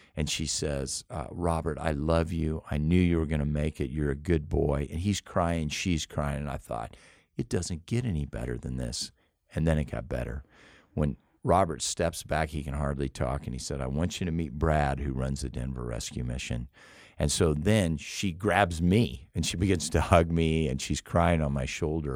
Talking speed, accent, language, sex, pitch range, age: 220 wpm, American, English, male, 70-85 Hz, 50-69